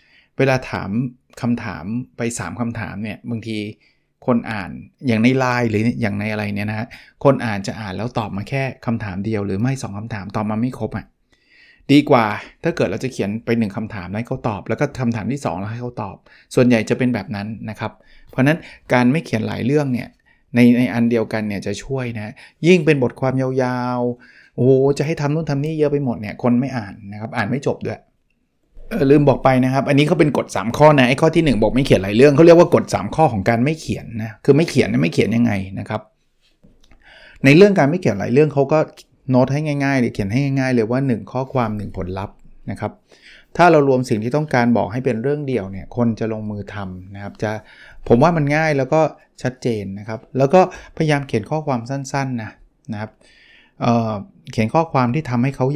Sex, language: male, Thai